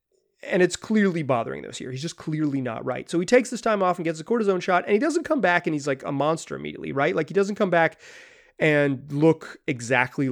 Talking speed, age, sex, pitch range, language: 245 wpm, 30-49, male, 135-180 Hz, English